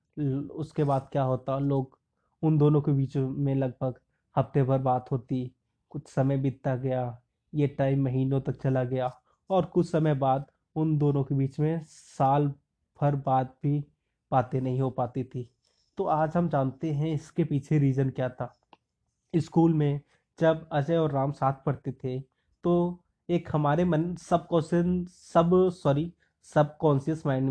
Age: 20-39